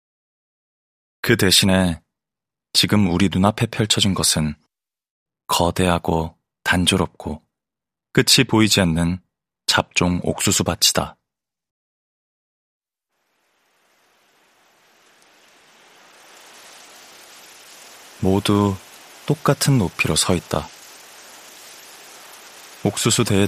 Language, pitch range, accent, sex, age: Korean, 85-105 Hz, native, male, 30-49